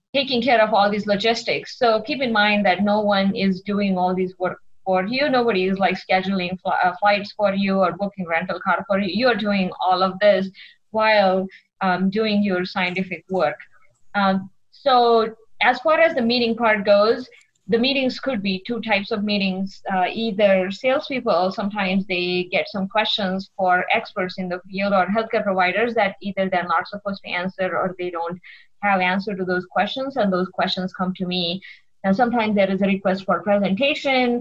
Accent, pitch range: Indian, 185-215 Hz